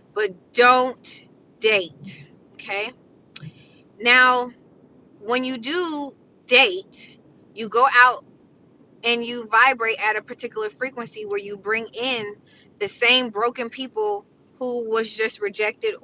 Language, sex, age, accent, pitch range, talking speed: English, female, 20-39, American, 215-265 Hz, 115 wpm